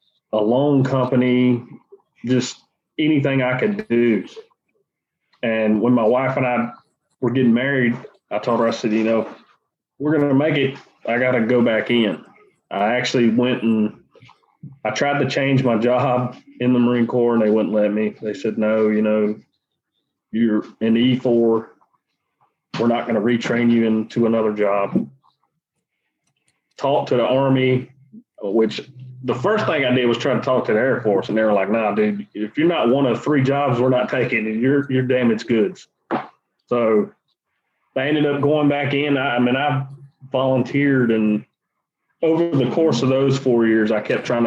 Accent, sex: American, male